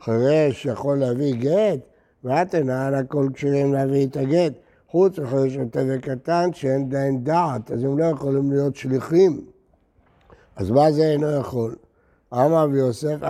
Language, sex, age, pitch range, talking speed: Hebrew, male, 60-79, 140-175 Hz, 150 wpm